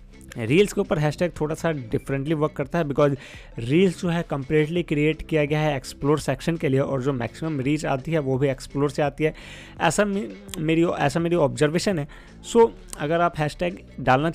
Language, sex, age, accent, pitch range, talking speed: Hindi, male, 20-39, native, 135-165 Hz, 195 wpm